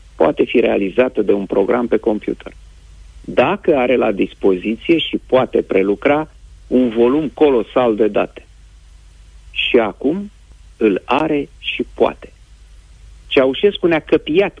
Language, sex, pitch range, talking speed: Romanian, male, 90-130 Hz, 120 wpm